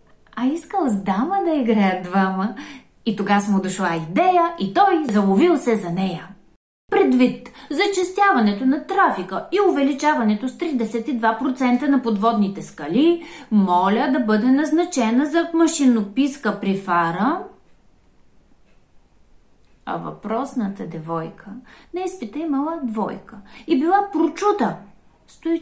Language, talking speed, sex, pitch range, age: Bulgarian, 110 wpm, female, 215-330 Hz, 30-49